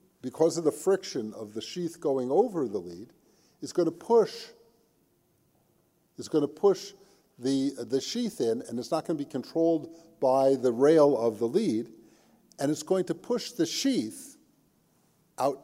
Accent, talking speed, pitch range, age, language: American, 170 wpm, 135-190 Hz, 50-69, English